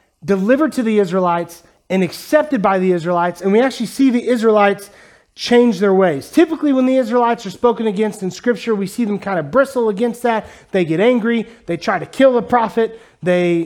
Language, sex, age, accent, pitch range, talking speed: English, male, 30-49, American, 200-250 Hz, 200 wpm